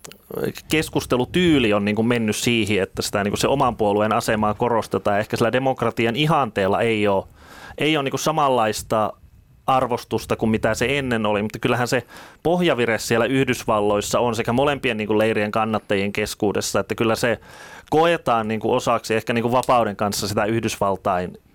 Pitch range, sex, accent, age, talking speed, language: 110-135 Hz, male, native, 30-49, 150 wpm, Finnish